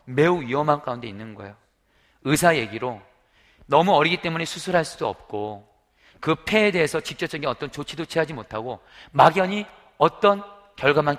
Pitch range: 115-160 Hz